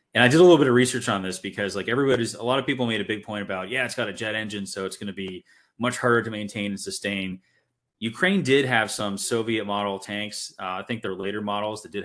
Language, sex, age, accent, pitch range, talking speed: English, male, 30-49, American, 95-110 Hz, 270 wpm